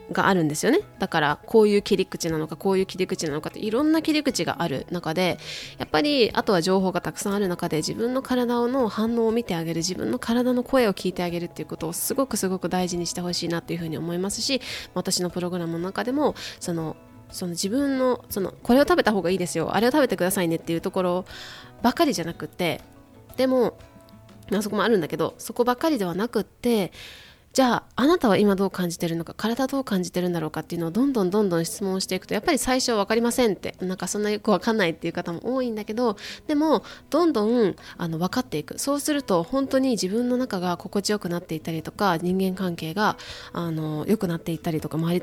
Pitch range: 170-235 Hz